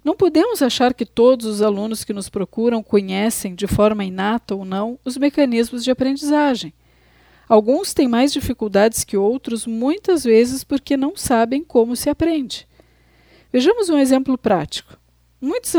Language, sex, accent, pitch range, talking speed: Italian, female, Brazilian, 210-280 Hz, 150 wpm